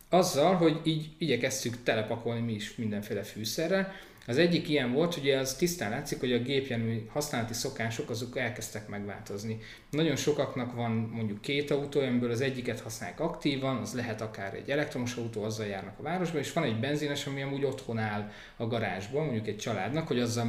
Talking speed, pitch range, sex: 180 wpm, 115-150 Hz, male